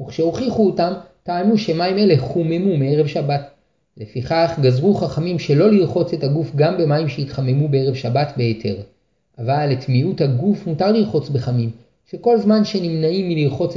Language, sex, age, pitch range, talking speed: Hebrew, male, 30-49, 140-190 Hz, 135 wpm